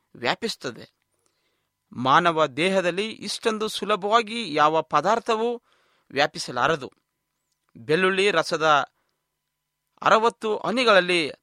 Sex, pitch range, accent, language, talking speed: male, 145-205 Hz, native, Kannada, 65 wpm